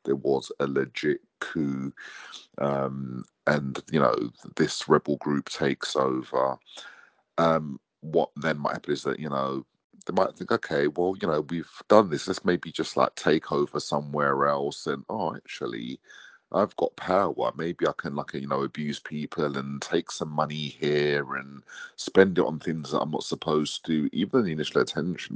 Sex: male